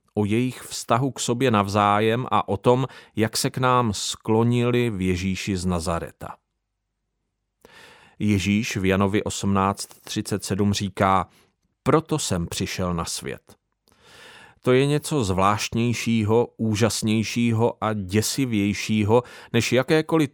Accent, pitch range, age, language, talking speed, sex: native, 100-130 Hz, 40-59, Czech, 110 wpm, male